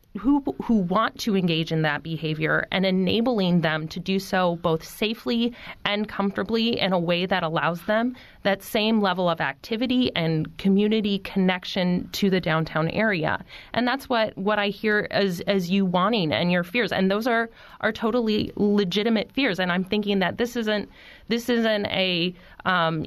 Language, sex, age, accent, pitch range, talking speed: English, female, 30-49, American, 180-220 Hz, 170 wpm